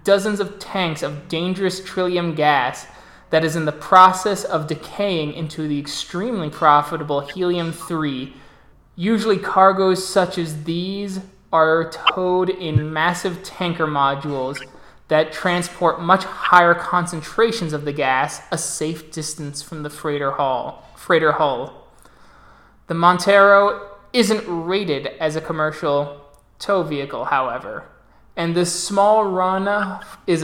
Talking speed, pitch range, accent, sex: 120 wpm, 155-190 Hz, American, male